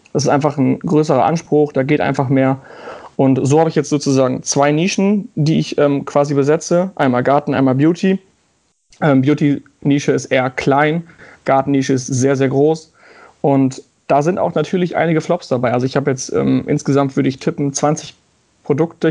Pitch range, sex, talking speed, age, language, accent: 130-150 Hz, male, 180 wpm, 30-49, German, German